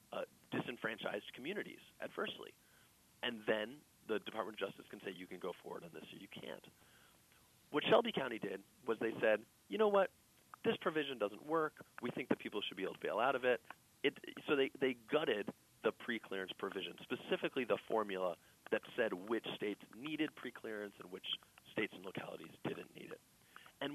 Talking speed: 185 wpm